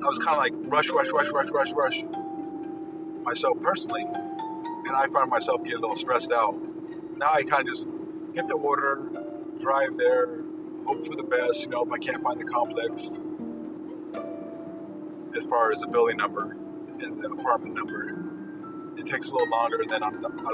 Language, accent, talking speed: English, American, 175 wpm